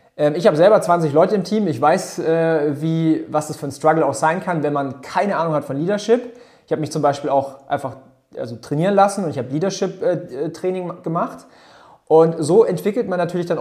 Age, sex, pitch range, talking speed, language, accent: 30-49, male, 145-165 Hz, 195 wpm, German, German